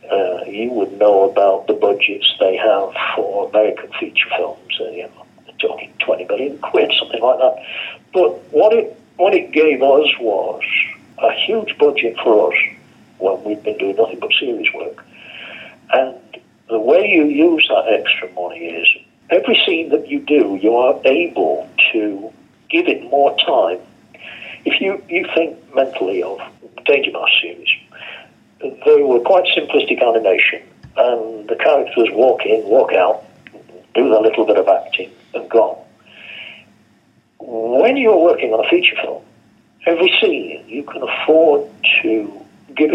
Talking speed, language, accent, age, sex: 150 wpm, English, British, 60-79, male